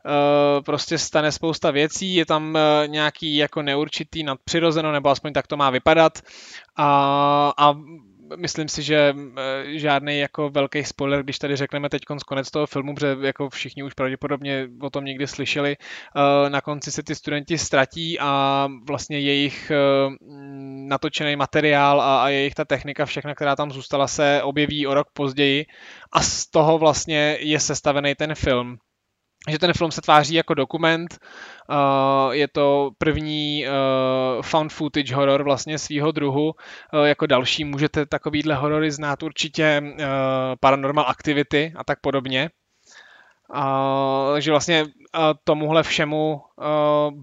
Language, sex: Czech, male